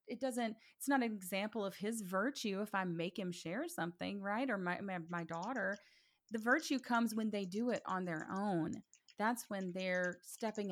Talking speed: 195 wpm